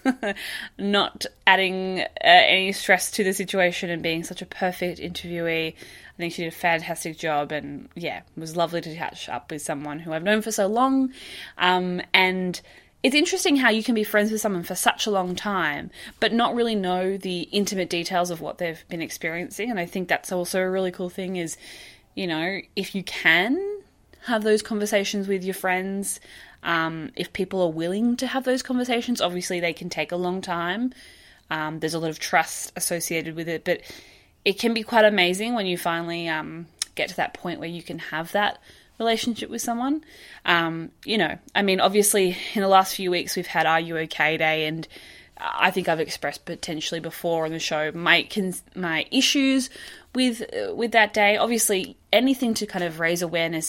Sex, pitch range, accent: female, 165-210 Hz, Australian